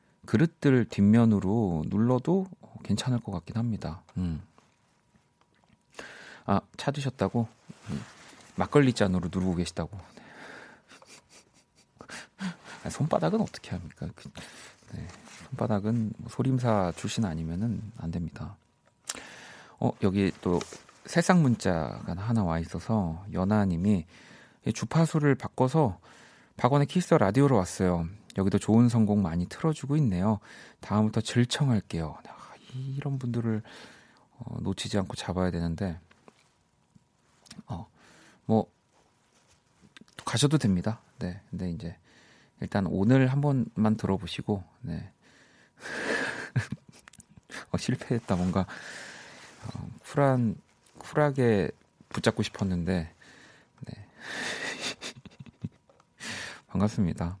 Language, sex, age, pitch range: Korean, male, 40-59, 90-125 Hz